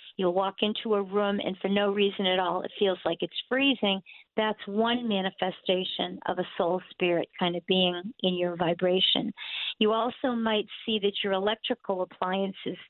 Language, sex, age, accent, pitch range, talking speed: English, female, 50-69, American, 185-225 Hz, 170 wpm